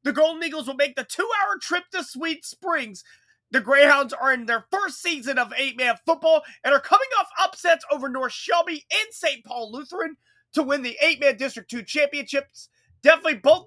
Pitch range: 245-310 Hz